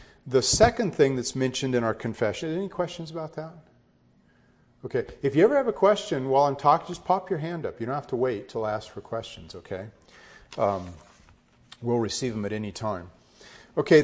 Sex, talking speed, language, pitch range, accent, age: male, 195 wpm, English, 110-155 Hz, American, 40-59